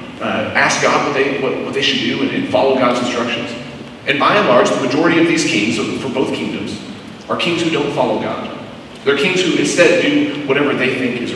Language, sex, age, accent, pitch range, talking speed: English, male, 40-59, American, 115-145 Hz, 220 wpm